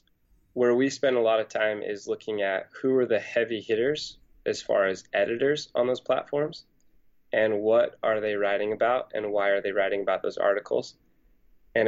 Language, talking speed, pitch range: English, 185 wpm, 100-120 Hz